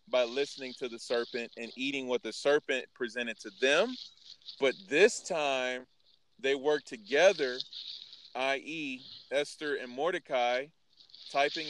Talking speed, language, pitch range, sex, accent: 125 wpm, English, 130-160 Hz, male, American